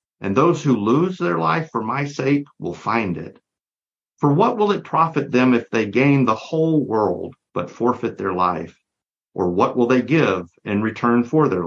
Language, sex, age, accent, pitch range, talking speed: English, male, 50-69, American, 105-145 Hz, 190 wpm